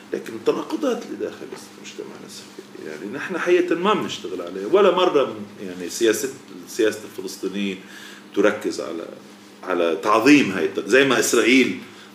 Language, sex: English, male